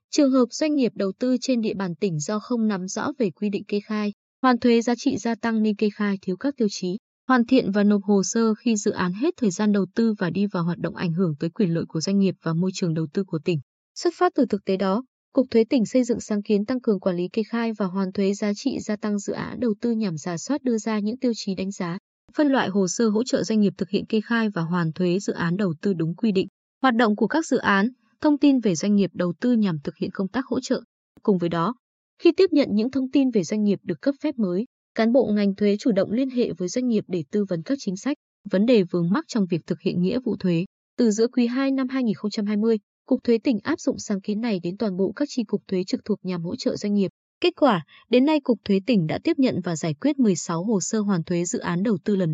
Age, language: 20-39, Vietnamese